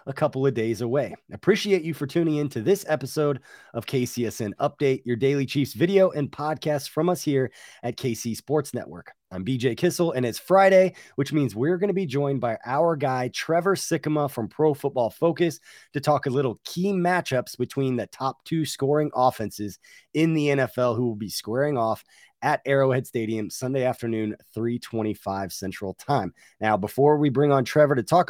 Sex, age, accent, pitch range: male, 20-39, American, 125-165 Hz